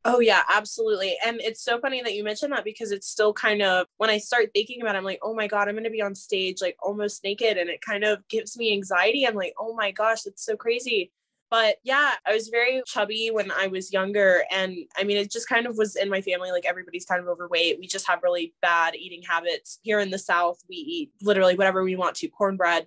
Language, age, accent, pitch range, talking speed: English, 20-39, American, 180-225 Hz, 250 wpm